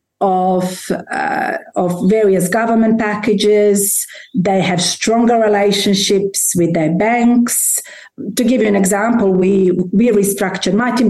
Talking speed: 125 wpm